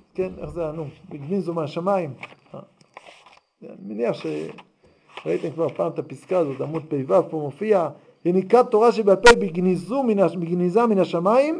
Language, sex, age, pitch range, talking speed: Hebrew, male, 50-69, 175-235 Hz, 130 wpm